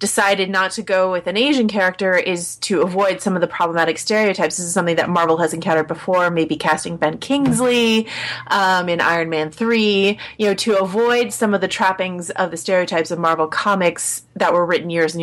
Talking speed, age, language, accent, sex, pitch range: 205 wpm, 30-49, English, American, female, 165-200 Hz